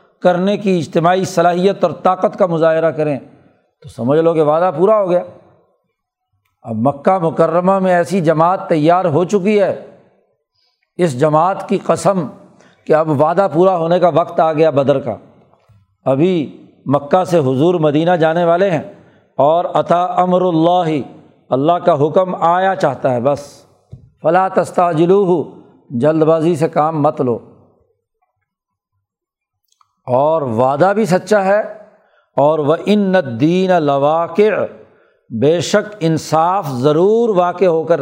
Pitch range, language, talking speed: 150-185 Hz, Urdu, 135 wpm